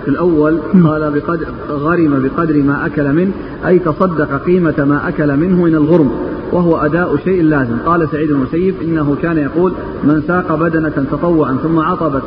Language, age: Arabic, 40-59